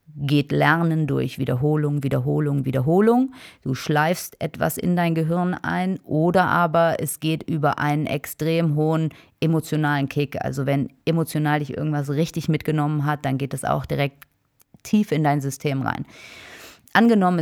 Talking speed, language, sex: 145 wpm, German, female